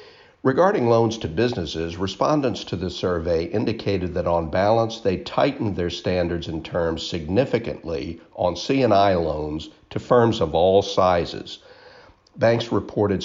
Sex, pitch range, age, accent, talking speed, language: male, 85-115 Hz, 60-79, American, 130 wpm, English